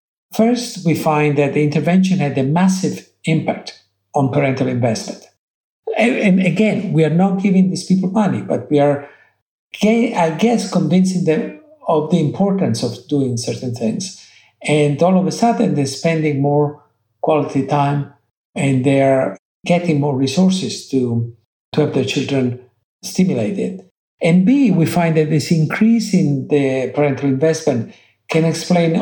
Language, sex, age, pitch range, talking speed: English, male, 60-79, 140-185 Hz, 145 wpm